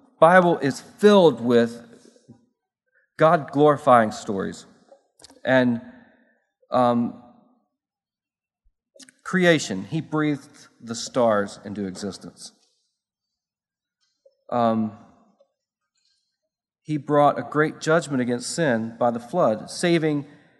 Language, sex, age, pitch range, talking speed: English, male, 40-59, 120-165 Hz, 80 wpm